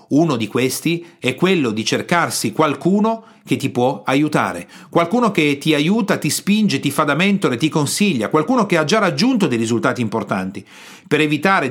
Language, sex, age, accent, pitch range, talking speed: Italian, male, 40-59, native, 130-185 Hz, 175 wpm